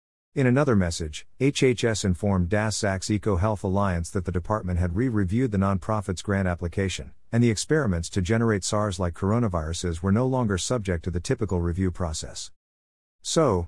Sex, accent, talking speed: male, American, 160 wpm